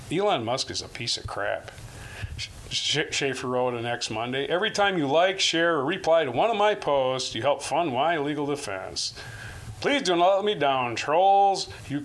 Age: 40-59